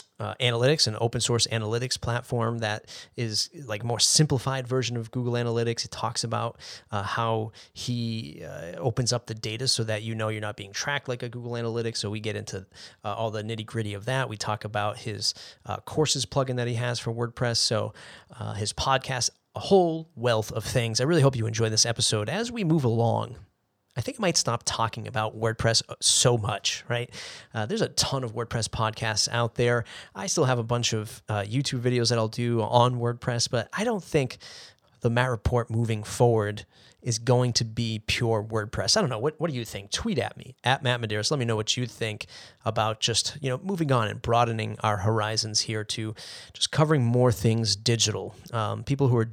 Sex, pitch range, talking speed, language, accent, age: male, 110-125 Hz, 210 wpm, English, American, 30-49